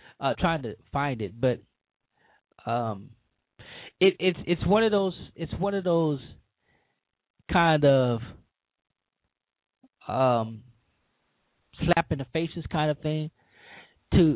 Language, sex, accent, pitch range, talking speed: English, male, American, 115-155 Hz, 115 wpm